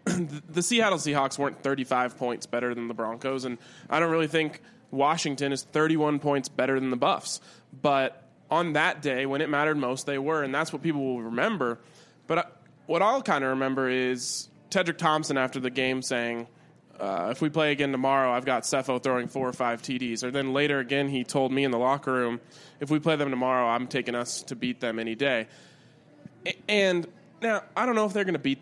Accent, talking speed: American, 210 wpm